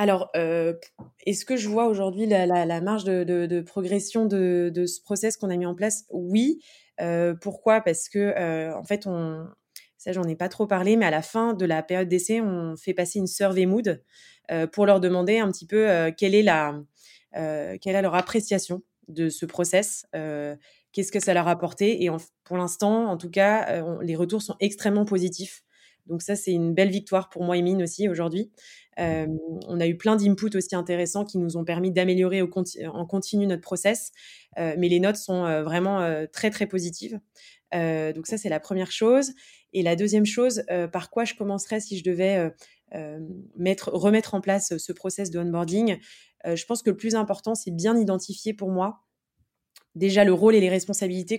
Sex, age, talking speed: female, 20-39, 210 wpm